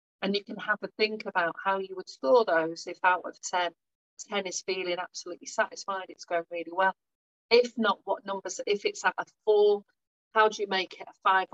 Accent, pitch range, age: British, 180-225 Hz, 40-59